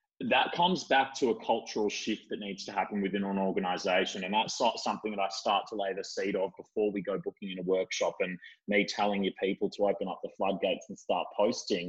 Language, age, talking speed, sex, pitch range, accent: English, 20-39, 225 wpm, male, 100-130 Hz, Australian